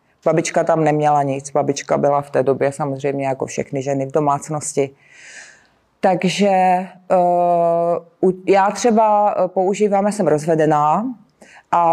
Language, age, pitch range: Czech, 30-49, 160-195 Hz